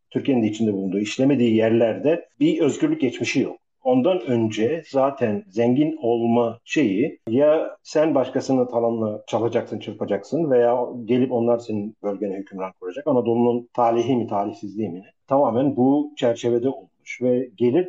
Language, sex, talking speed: Turkish, male, 140 wpm